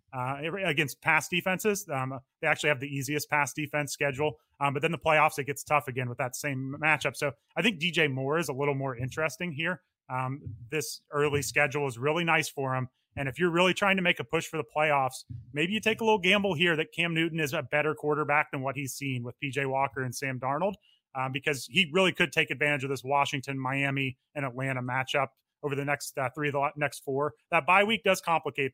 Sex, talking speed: male, 230 wpm